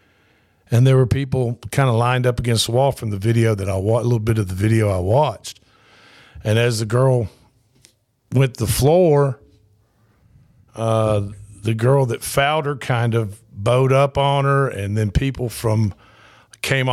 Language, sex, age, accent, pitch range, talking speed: English, male, 50-69, American, 110-130 Hz, 175 wpm